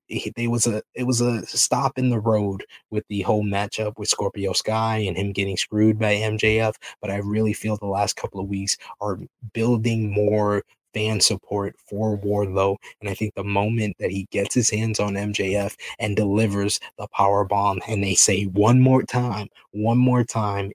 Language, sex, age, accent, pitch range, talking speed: English, male, 20-39, American, 100-110 Hz, 190 wpm